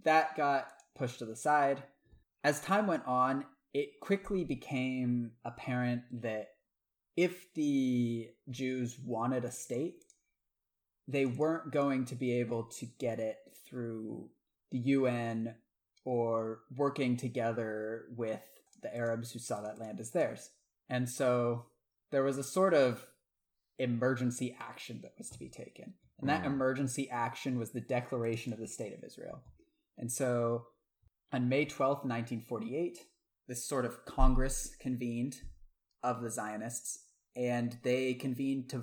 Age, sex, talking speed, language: 20-39, male, 140 wpm, English